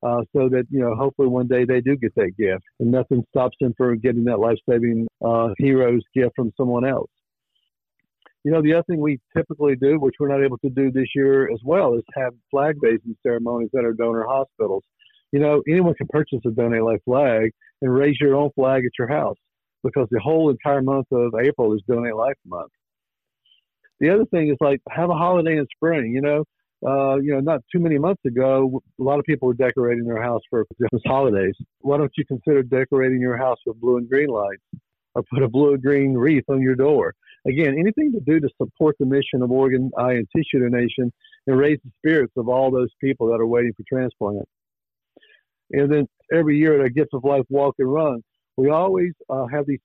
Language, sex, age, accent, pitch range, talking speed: English, male, 60-79, American, 125-145 Hz, 210 wpm